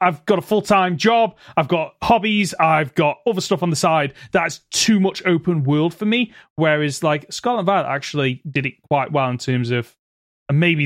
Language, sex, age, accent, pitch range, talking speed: English, male, 30-49, British, 140-180 Hz, 200 wpm